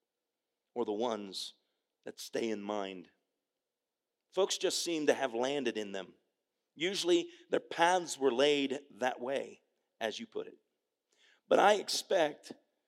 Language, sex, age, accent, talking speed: English, male, 40-59, American, 135 wpm